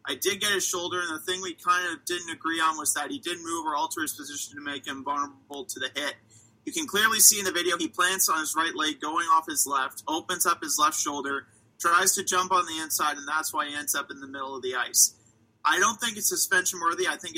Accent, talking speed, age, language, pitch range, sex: American, 270 wpm, 30-49, English, 145-230 Hz, male